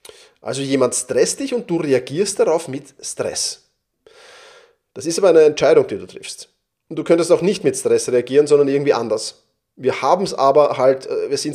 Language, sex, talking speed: German, male, 160 wpm